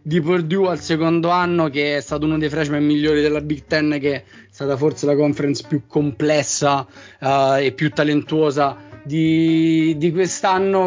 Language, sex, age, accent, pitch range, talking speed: Italian, male, 20-39, native, 145-175 Hz, 160 wpm